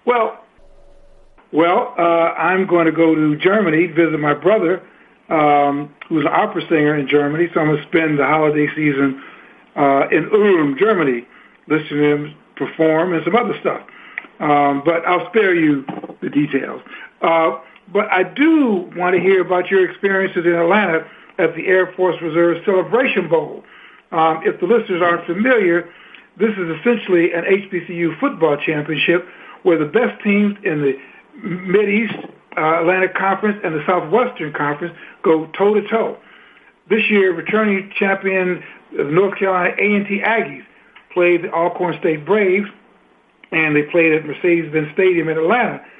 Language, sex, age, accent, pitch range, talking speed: English, male, 60-79, American, 160-205 Hz, 150 wpm